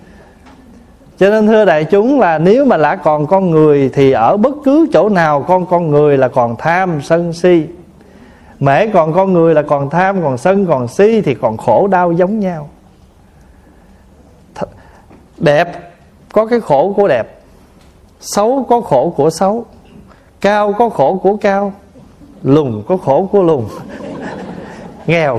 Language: Vietnamese